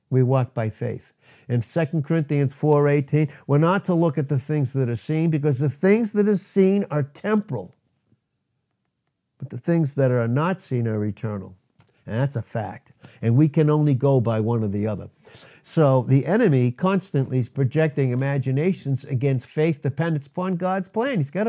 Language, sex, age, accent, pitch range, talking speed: English, male, 60-79, American, 135-190 Hz, 180 wpm